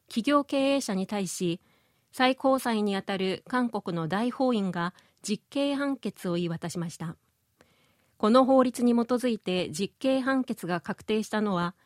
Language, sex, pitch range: Japanese, female, 190-255 Hz